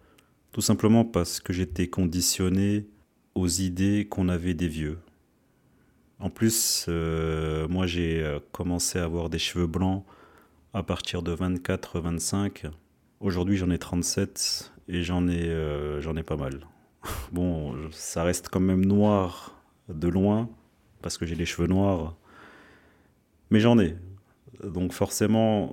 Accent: French